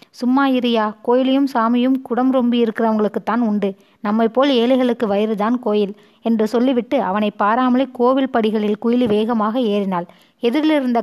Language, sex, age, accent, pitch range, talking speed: Tamil, female, 20-39, native, 210-255 Hz, 125 wpm